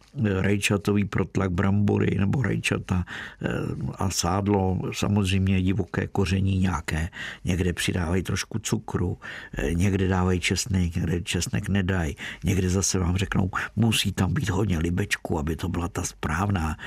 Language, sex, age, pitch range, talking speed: Czech, male, 60-79, 90-105 Hz, 125 wpm